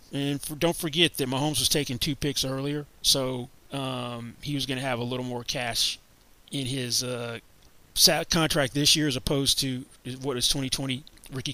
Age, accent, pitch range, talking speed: 30-49, American, 125-145 Hz, 175 wpm